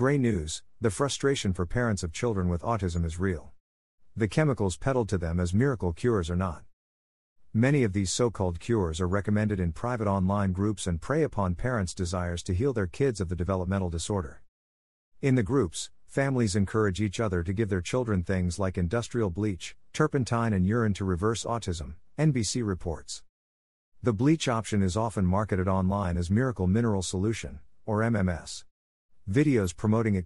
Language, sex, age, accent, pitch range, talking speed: English, male, 50-69, American, 90-115 Hz, 170 wpm